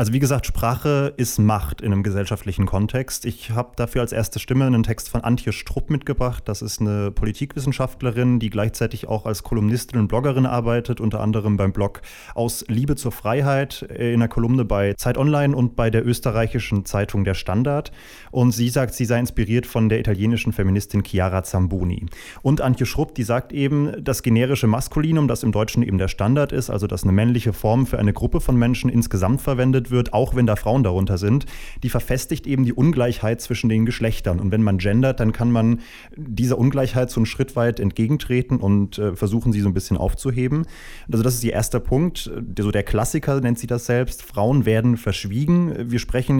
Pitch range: 110-130 Hz